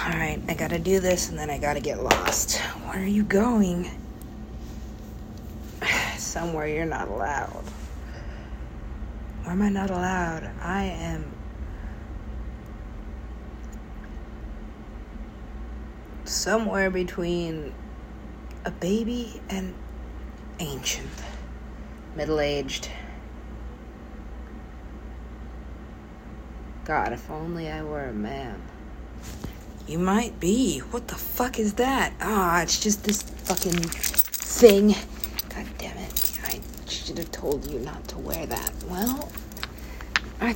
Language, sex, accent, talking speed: English, female, American, 100 wpm